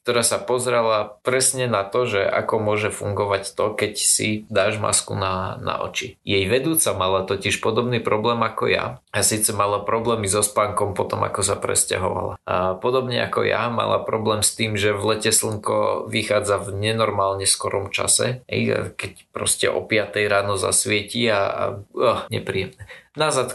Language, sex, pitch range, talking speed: Slovak, male, 100-130 Hz, 165 wpm